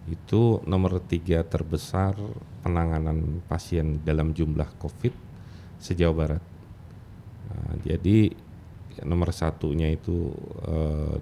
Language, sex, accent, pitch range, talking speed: Indonesian, male, native, 85-100 Hz, 90 wpm